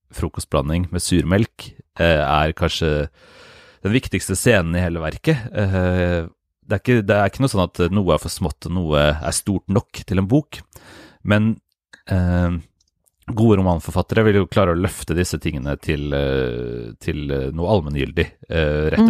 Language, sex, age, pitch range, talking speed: English, male, 30-49, 85-105 Hz, 155 wpm